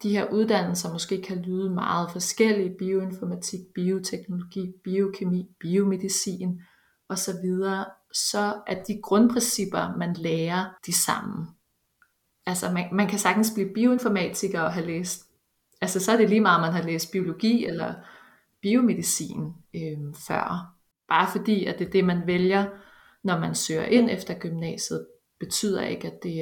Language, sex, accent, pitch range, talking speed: Danish, female, native, 175-205 Hz, 145 wpm